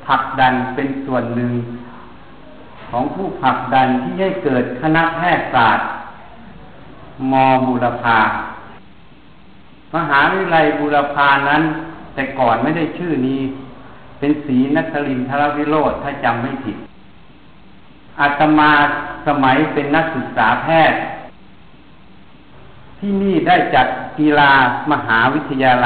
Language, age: Thai, 60-79